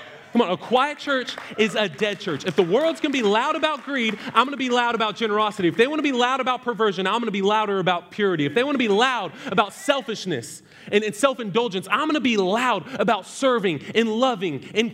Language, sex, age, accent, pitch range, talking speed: English, male, 30-49, American, 180-245 Hz, 245 wpm